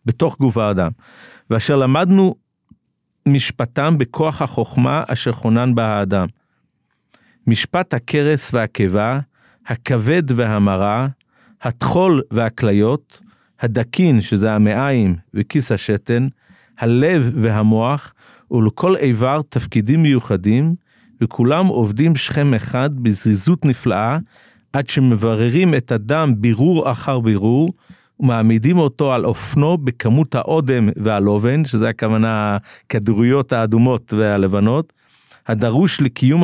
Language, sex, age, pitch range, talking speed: Hebrew, male, 50-69, 110-145 Hz, 95 wpm